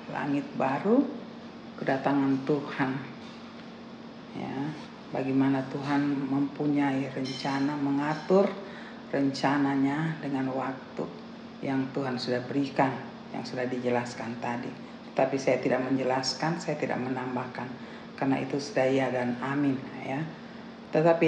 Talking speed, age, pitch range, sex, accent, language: 100 wpm, 40-59, 135-170 Hz, female, native, Indonesian